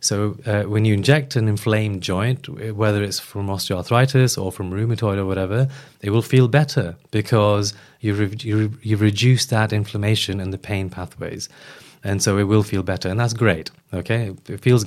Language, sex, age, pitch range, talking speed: English, male, 20-39, 95-120 Hz, 190 wpm